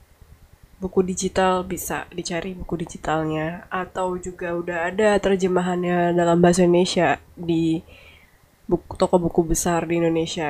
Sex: female